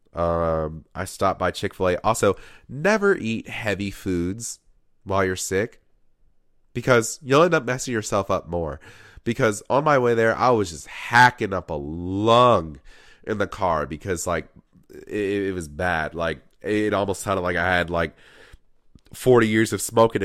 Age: 30-49